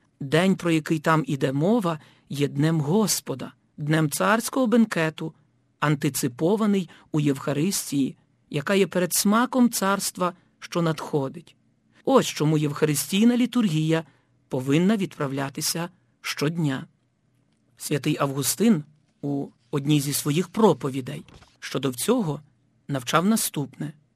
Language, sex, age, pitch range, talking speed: Ukrainian, male, 50-69, 145-190 Hz, 100 wpm